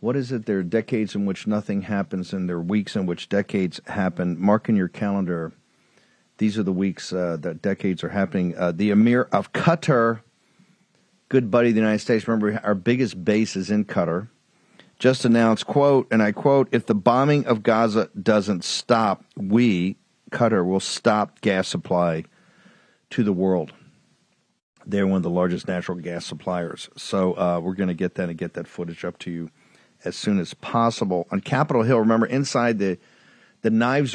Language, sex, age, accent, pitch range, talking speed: English, male, 50-69, American, 95-115 Hz, 185 wpm